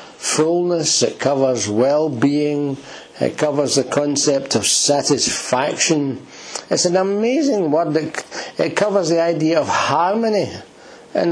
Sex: male